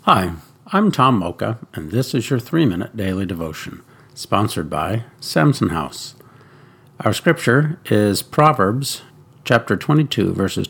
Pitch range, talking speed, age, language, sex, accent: 100-135 Hz, 130 wpm, 60-79, English, male, American